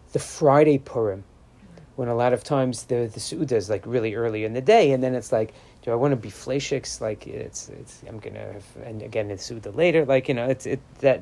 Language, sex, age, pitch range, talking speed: English, male, 40-59, 110-150 Hz, 230 wpm